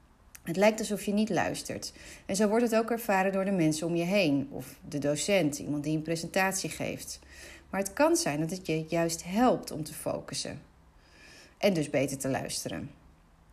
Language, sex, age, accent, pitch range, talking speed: Dutch, female, 40-59, Dutch, 150-215 Hz, 190 wpm